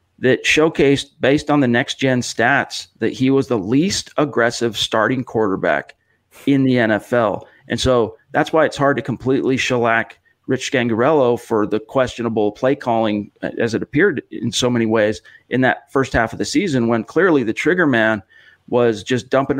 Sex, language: male, English